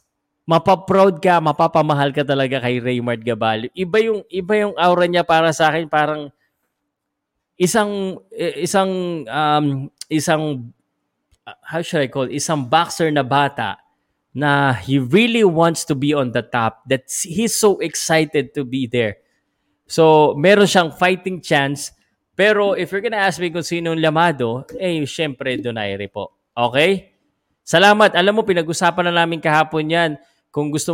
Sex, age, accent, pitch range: male, 20-39, native, 120-160 Hz